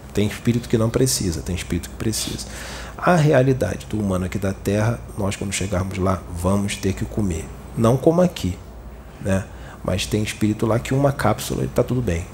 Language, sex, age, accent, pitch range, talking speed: Portuguese, male, 40-59, Brazilian, 90-125 Hz, 185 wpm